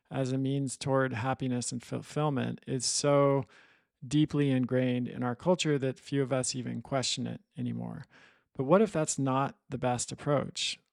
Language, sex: English, male